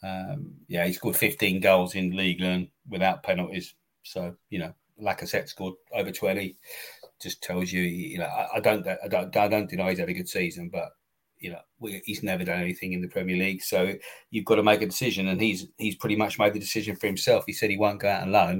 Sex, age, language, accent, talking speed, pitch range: male, 30-49, English, British, 230 wpm, 95-105 Hz